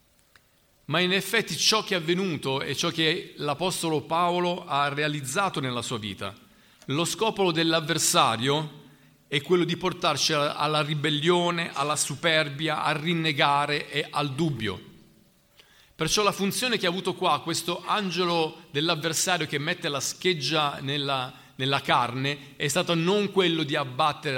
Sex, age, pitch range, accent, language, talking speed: male, 40-59, 145-180 Hz, native, Italian, 140 wpm